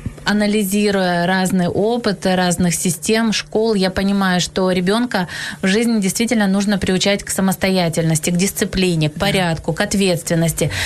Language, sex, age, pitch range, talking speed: Ukrainian, female, 20-39, 190-230 Hz, 125 wpm